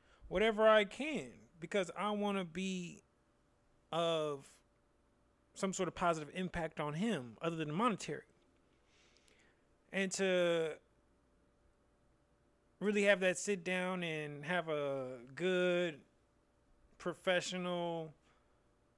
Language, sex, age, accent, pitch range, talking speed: English, male, 30-49, American, 140-185 Hz, 100 wpm